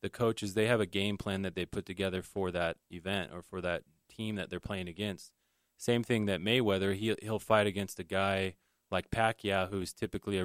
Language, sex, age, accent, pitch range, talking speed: English, male, 20-39, American, 90-100 Hz, 210 wpm